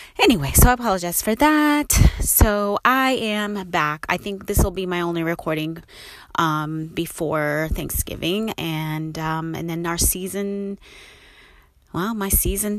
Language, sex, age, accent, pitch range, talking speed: English, female, 30-49, American, 155-195 Hz, 140 wpm